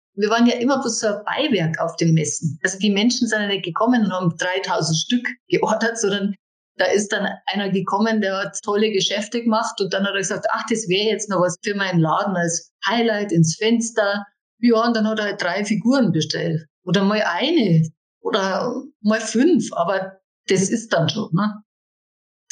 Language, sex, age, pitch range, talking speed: German, female, 50-69, 180-225 Hz, 195 wpm